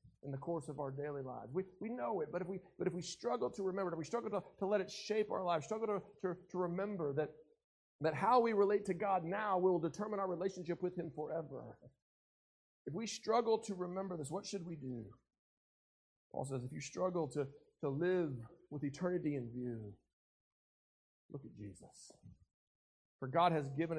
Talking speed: 200 wpm